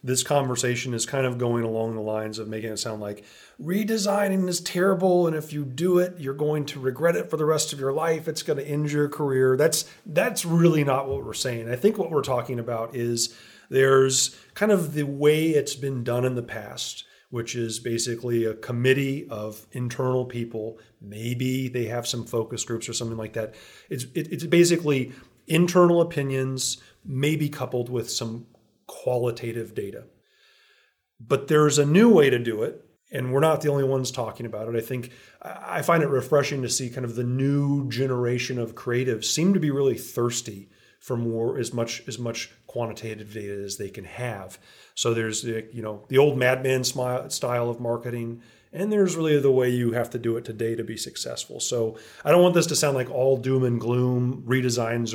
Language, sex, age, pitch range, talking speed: English, male, 30-49, 115-145 Hz, 195 wpm